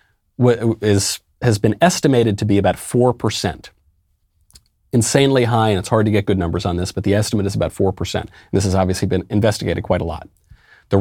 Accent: American